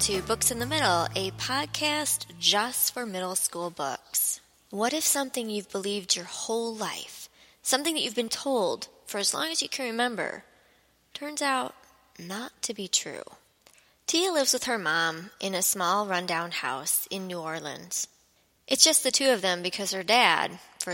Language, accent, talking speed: English, American, 175 wpm